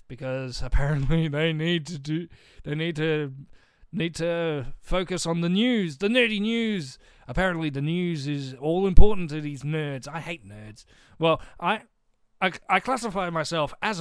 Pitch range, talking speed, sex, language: 155-230 Hz, 160 wpm, male, English